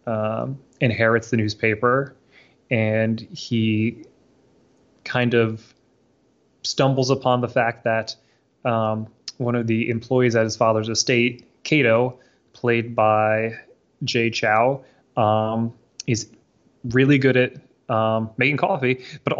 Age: 20-39